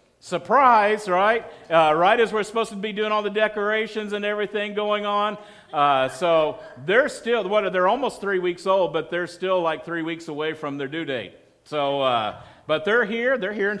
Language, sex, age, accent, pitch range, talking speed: English, male, 50-69, American, 170-210 Hz, 200 wpm